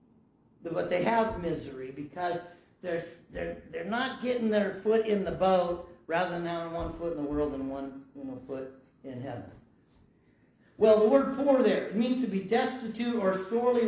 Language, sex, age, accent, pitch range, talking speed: English, male, 50-69, American, 165-225 Hz, 180 wpm